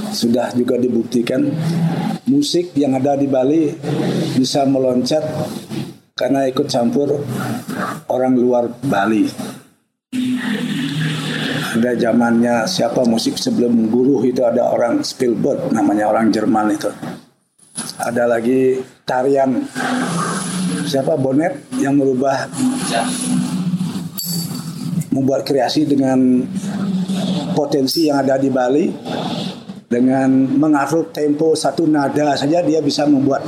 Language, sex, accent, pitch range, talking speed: Indonesian, male, native, 130-200 Hz, 95 wpm